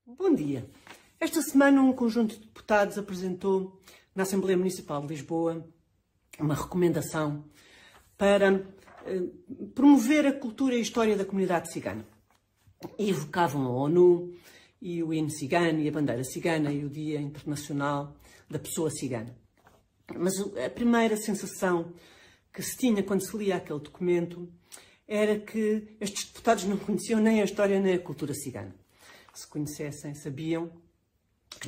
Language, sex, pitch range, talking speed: Portuguese, female, 145-200 Hz, 140 wpm